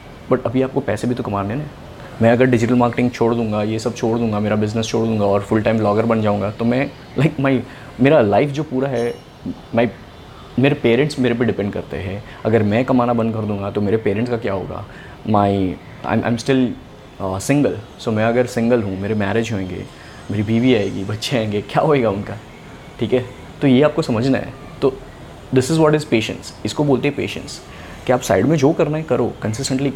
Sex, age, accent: male, 20-39, Indian